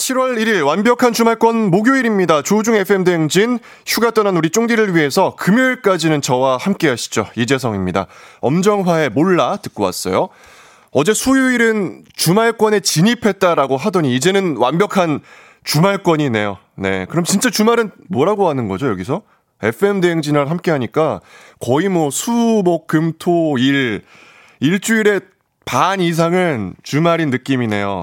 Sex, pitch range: male, 130-210 Hz